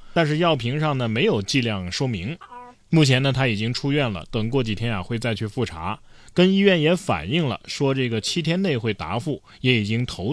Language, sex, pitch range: Chinese, male, 115-180 Hz